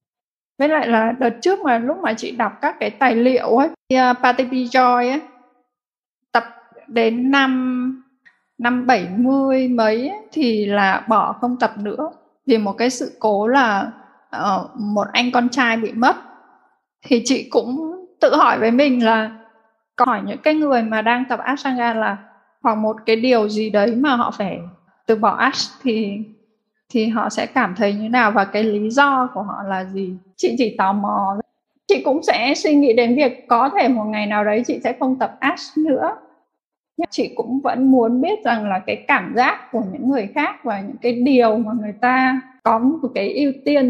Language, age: Vietnamese, 20-39